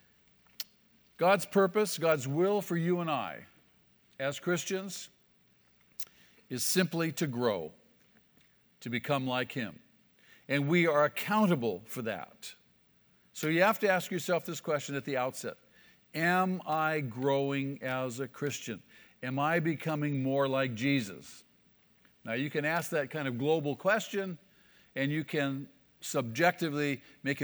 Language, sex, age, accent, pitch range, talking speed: English, male, 50-69, American, 135-175 Hz, 135 wpm